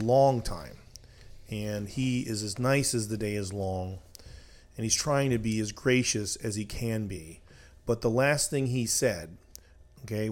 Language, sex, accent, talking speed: English, male, American, 175 wpm